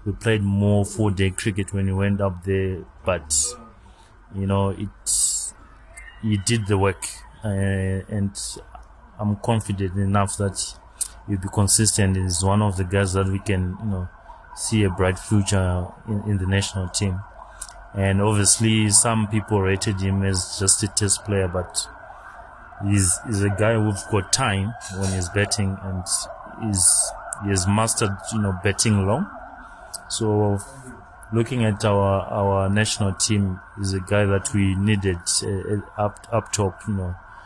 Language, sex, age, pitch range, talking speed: English, male, 30-49, 95-105 Hz, 155 wpm